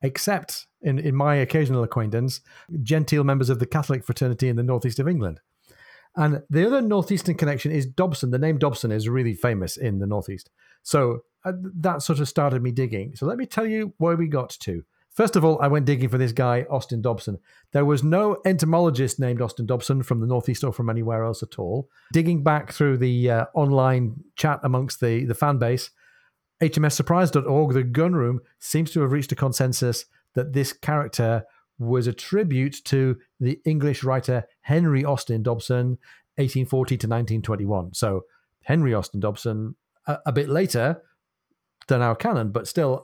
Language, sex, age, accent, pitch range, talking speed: English, male, 40-59, British, 120-150 Hz, 175 wpm